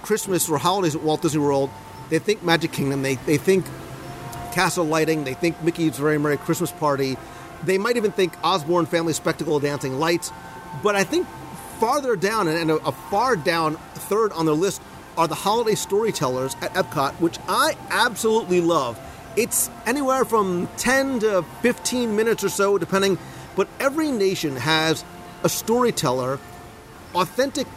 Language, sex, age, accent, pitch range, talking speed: English, male, 40-59, American, 155-195 Hz, 160 wpm